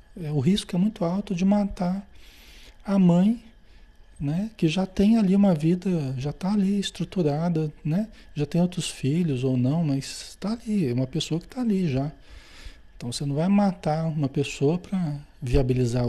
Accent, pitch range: Brazilian, 125-185 Hz